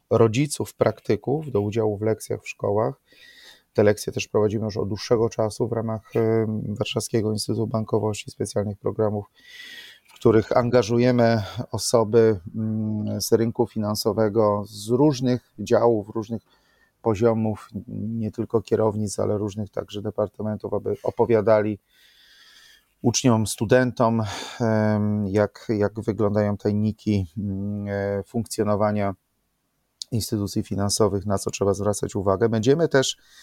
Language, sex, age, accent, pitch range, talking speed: Polish, male, 30-49, native, 105-115 Hz, 110 wpm